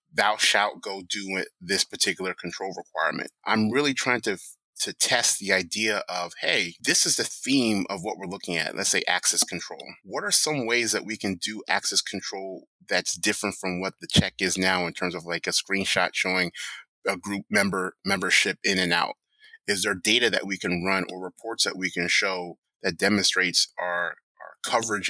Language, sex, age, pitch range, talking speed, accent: English, male, 30-49, 90-105 Hz, 195 wpm, American